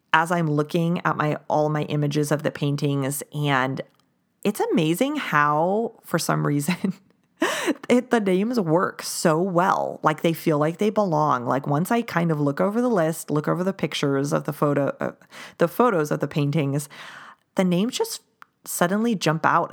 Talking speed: 175 wpm